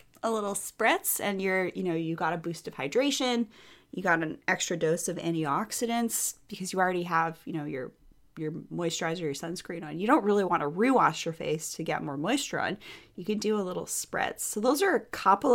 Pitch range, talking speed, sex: 170-220 Hz, 215 wpm, female